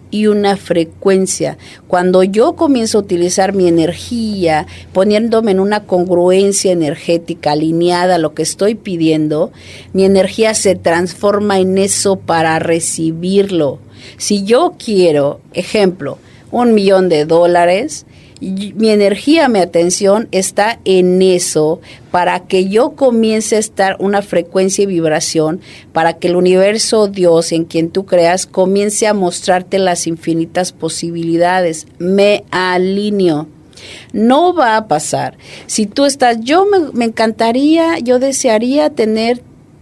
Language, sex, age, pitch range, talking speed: Spanish, female, 50-69, 170-220 Hz, 130 wpm